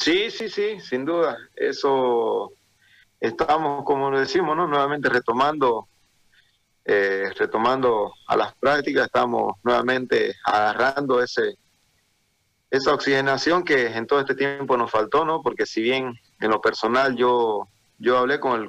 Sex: male